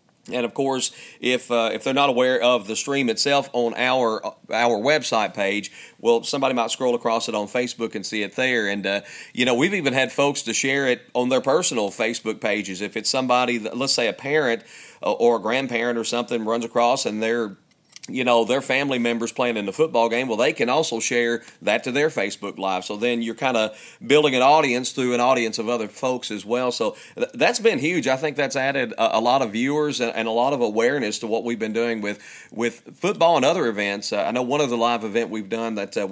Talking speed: 235 wpm